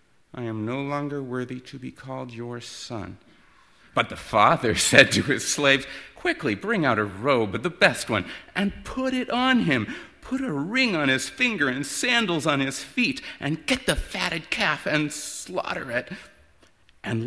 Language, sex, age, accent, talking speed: English, male, 50-69, American, 175 wpm